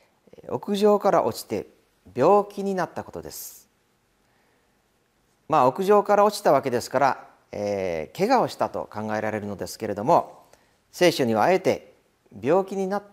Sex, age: male, 40-59